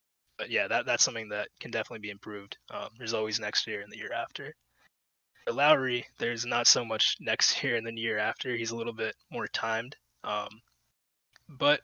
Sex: male